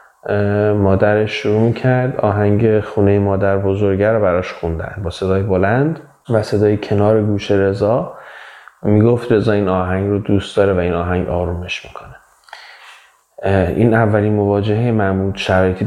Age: 30-49